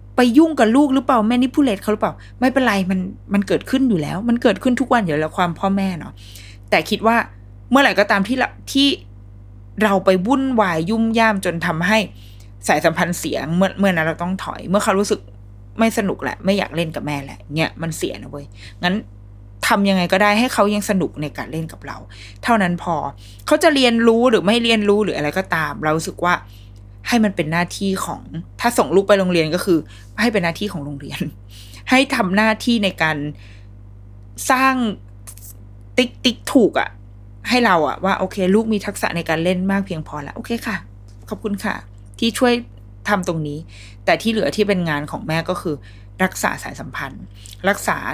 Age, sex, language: 20-39, female, Thai